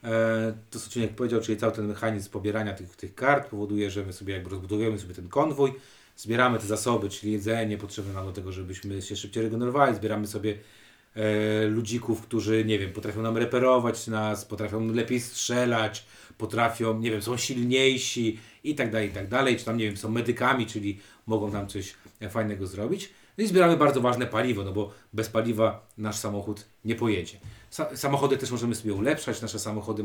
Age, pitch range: 30-49, 105-125 Hz